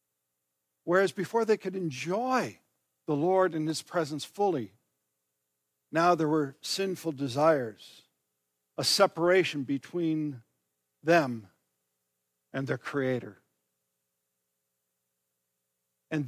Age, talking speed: 50-69, 90 wpm